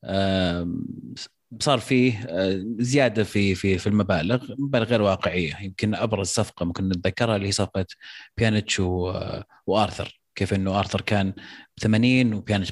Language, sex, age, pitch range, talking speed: Arabic, male, 30-49, 100-125 Hz, 125 wpm